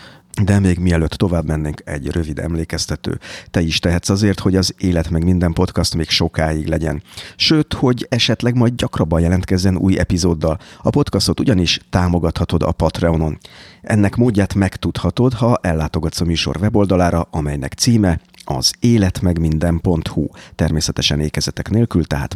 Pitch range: 80-100 Hz